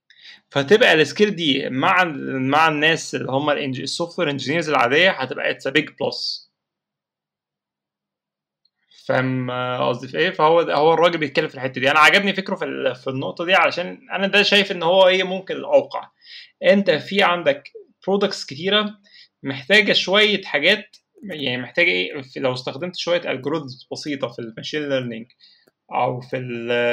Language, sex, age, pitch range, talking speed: Arabic, male, 20-39, 130-190 Hz, 145 wpm